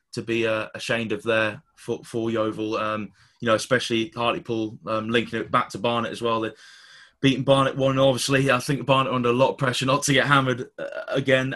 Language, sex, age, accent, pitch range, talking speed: English, male, 20-39, British, 120-135 Hz, 195 wpm